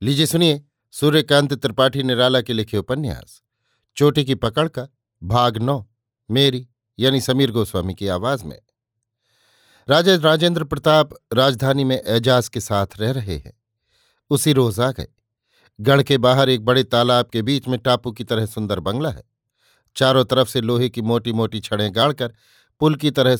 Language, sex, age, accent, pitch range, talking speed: Hindi, male, 50-69, native, 115-135 Hz, 155 wpm